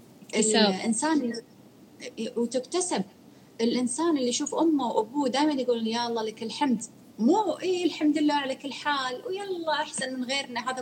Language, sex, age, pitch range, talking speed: Arabic, female, 30-49, 210-285 Hz, 140 wpm